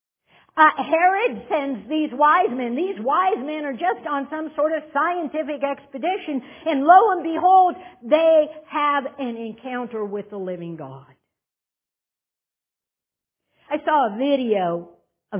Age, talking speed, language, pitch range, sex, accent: 60-79, 135 wpm, English, 225-315 Hz, female, American